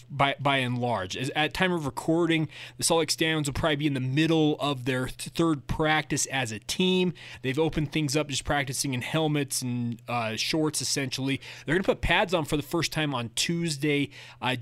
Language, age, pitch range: English, 30-49, 135-160 Hz